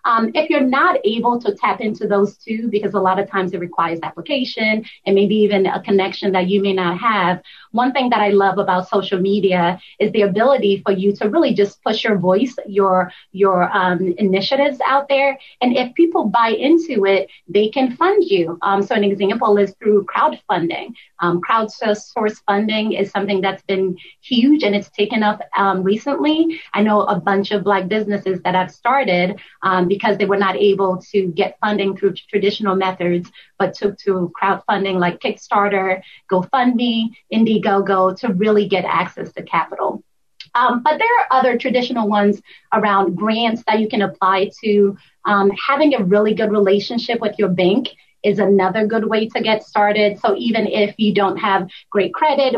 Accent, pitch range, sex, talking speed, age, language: American, 190-225 Hz, female, 180 wpm, 30-49, English